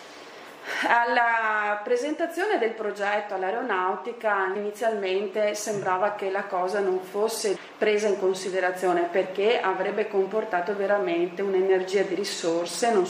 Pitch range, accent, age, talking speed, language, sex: 185-235 Hz, native, 30-49, 105 wpm, Italian, female